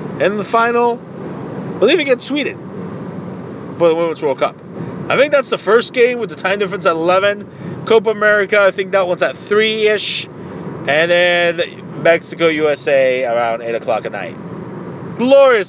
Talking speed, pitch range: 160 wpm, 165-200 Hz